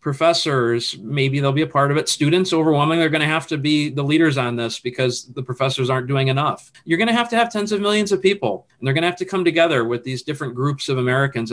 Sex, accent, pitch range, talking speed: male, American, 140-200 Hz, 265 wpm